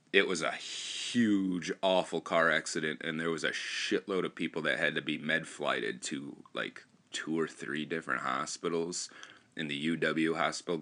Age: 30-49